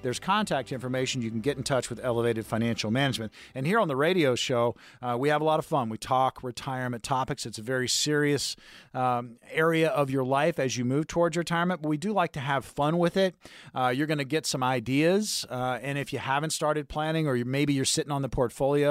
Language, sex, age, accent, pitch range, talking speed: English, male, 40-59, American, 125-155 Hz, 235 wpm